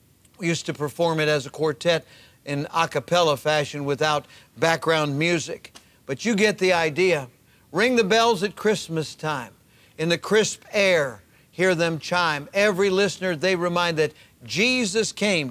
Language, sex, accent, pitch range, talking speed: English, male, American, 150-190 Hz, 155 wpm